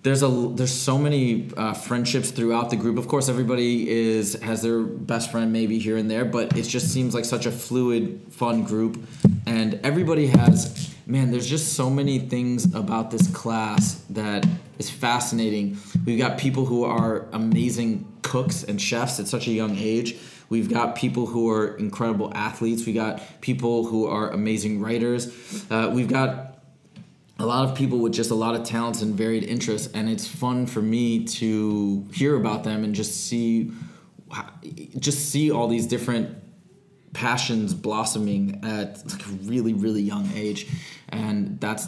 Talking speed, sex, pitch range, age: 170 wpm, male, 110-135 Hz, 20-39